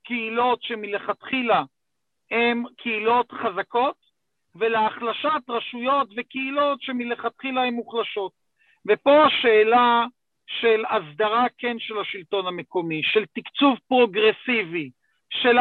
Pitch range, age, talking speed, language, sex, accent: 215-250 Hz, 50-69, 90 wpm, Hebrew, male, native